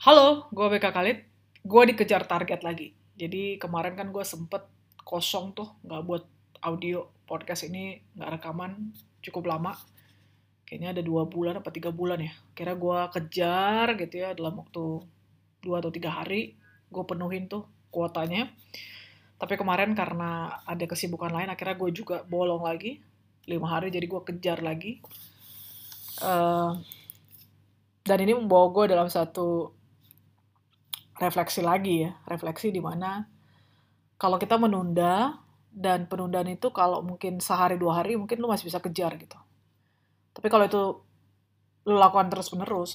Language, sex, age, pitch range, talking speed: Indonesian, female, 20-39, 160-190 Hz, 140 wpm